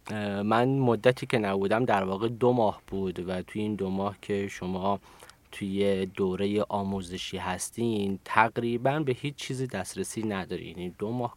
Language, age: Persian, 30-49